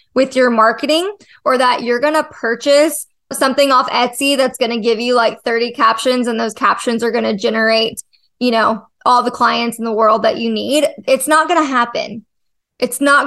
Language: English